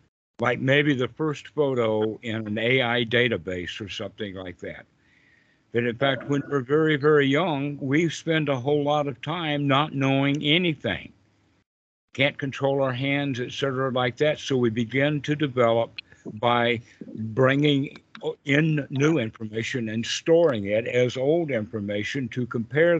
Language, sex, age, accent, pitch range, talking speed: English, male, 60-79, American, 120-145 Hz, 150 wpm